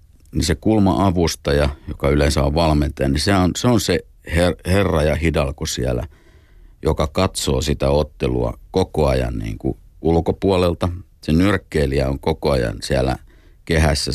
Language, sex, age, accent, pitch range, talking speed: Finnish, male, 50-69, native, 70-80 Hz, 145 wpm